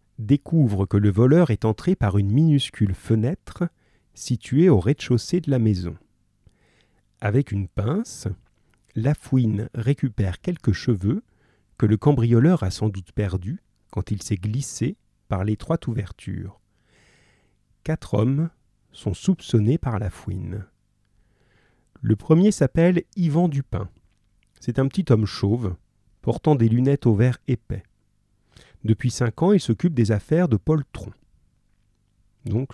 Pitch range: 105-135 Hz